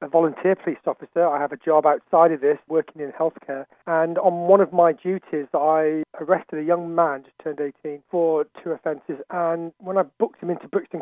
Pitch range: 160-195 Hz